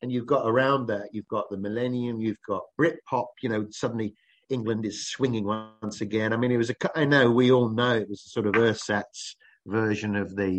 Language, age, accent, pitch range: English, 50-69, British, 100-125 Hz